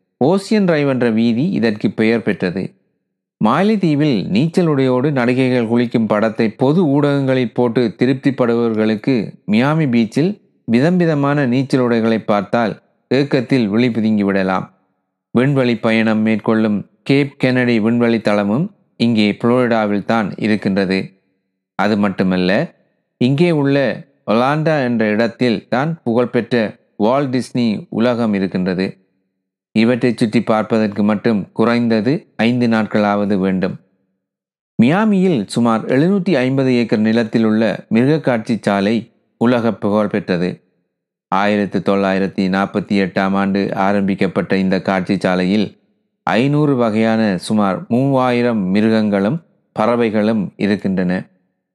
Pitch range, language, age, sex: 100-125 Hz, Tamil, 30-49, male